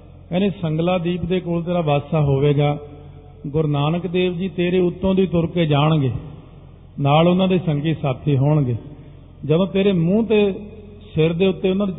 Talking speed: 160 wpm